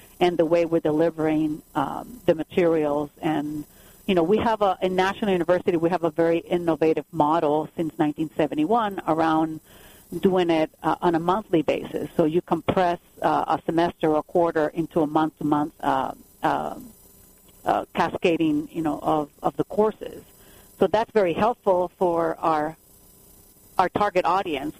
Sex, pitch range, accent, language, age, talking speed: female, 155-180 Hz, American, English, 50-69, 155 wpm